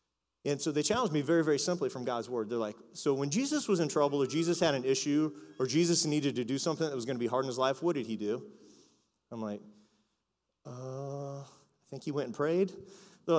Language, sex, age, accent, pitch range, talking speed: English, male, 30-49, American, 125-180 Hz, 240 wpm